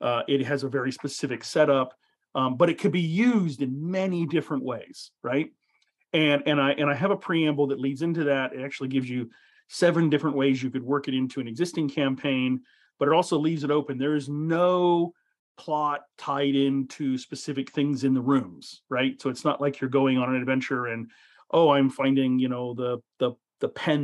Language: English